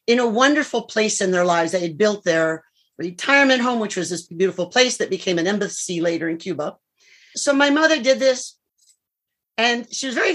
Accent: American